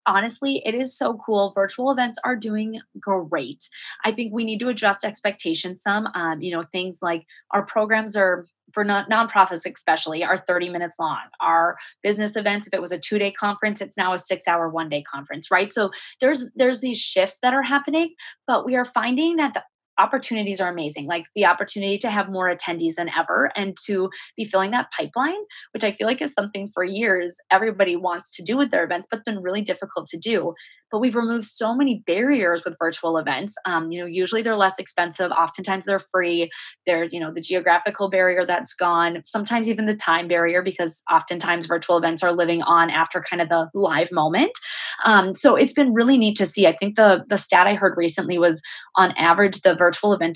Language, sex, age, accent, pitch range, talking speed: English, female, 20-39, American, 175-220 Hz, 205 wpm